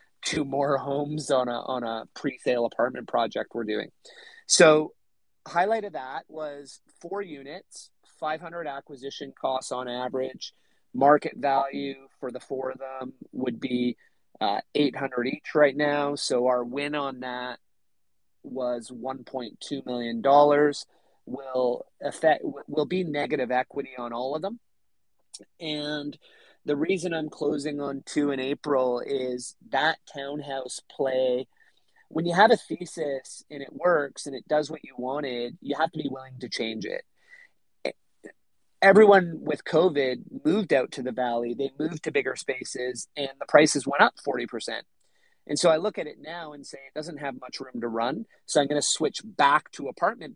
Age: 30-49